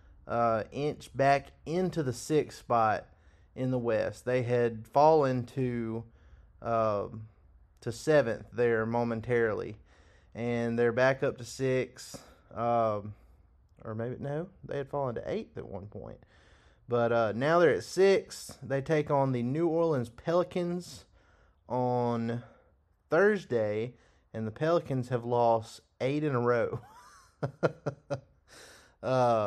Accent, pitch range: American, 110-130 Hz